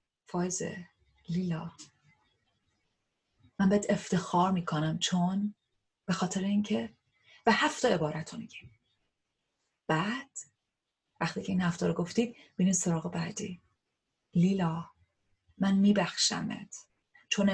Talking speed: 90 wpm